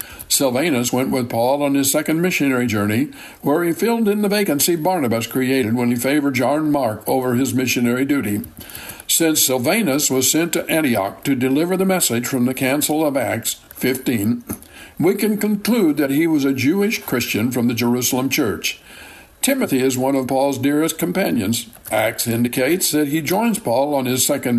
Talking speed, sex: 175 wpm, male